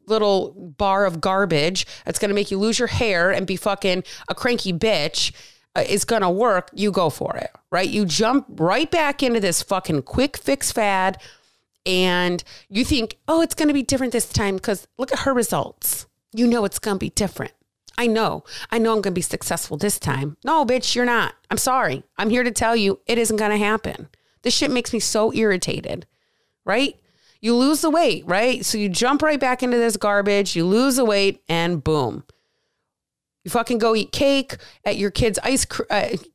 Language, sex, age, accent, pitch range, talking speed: English, female, 30-49, American, 190-245 Hz, 205 wpm